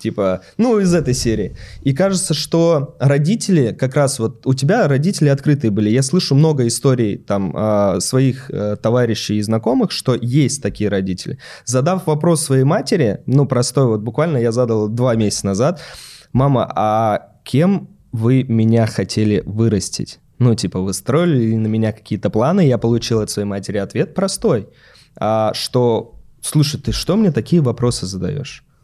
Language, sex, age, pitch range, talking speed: Russian, male, 20-39, 110-150 Hz, 150 wpm